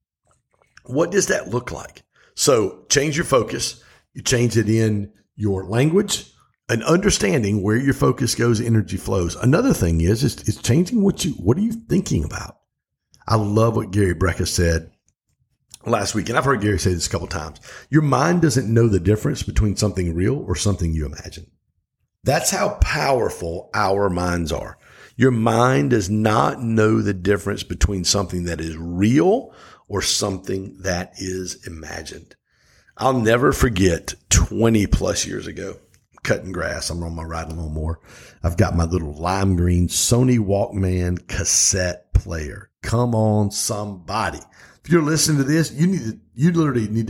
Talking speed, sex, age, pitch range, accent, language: 165 wpm, male, 50-69, 90-120 Hz, American, English